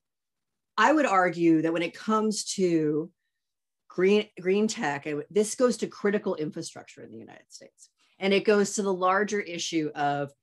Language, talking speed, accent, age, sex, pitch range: English, 160 wpm, American, 30-49, female, 150-195 Hz